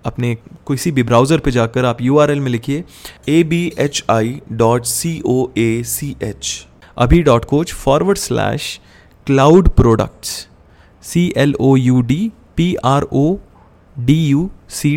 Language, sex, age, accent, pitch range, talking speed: Hindi, male, 20-39, native, 120-145 Hz, 140 wpm